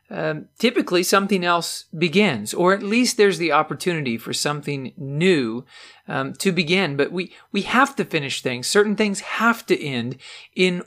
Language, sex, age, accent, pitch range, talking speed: English, male, 40-59, American, 150-195 Hz, 165 wpm